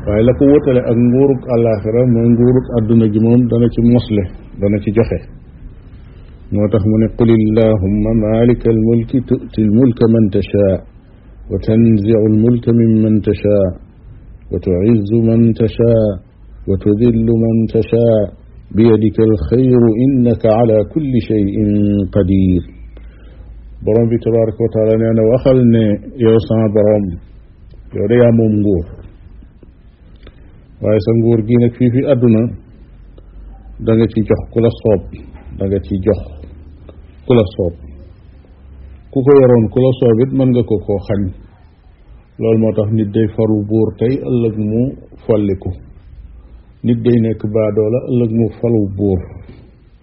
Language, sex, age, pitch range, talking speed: French, male, 50-69, 100-115 Hz, 105 wpm